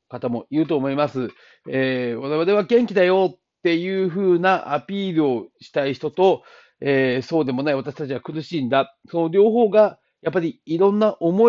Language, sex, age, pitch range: Japanese, male, 40-59, 125-180 Hz